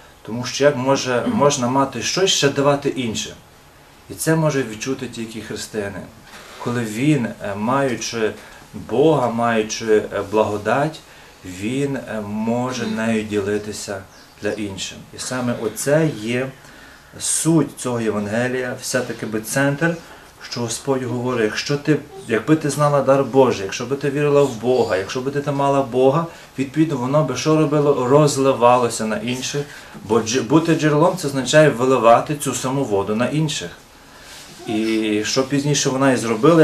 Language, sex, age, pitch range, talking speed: Ukrainian, male, 30-49, 115-145 Hz, 135 wpm